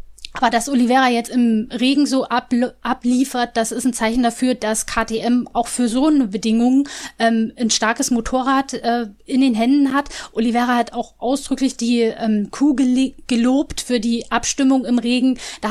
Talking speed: 165 wpm